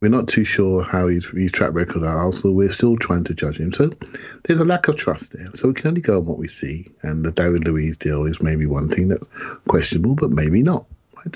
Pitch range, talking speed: 85-115 Hz, 255 wpm